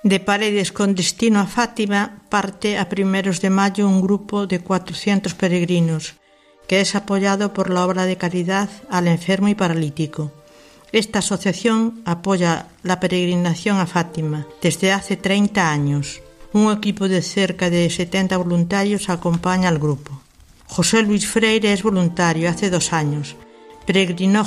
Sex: female